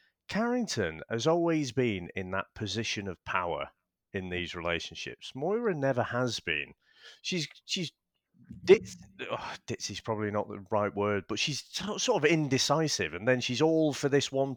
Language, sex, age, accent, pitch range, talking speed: English, male, 40-59, British, 105-145 Hz, 165 wpm